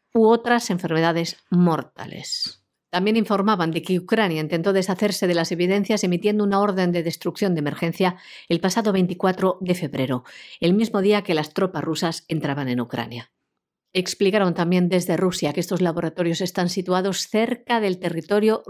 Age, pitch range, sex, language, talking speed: 50-69, 160-210 Hz, female, Spanish, 155 wpm